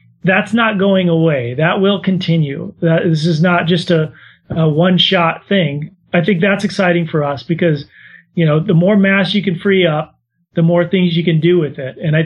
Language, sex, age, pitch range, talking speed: English, male, 30-49, 155-185 Hz, 210 wpm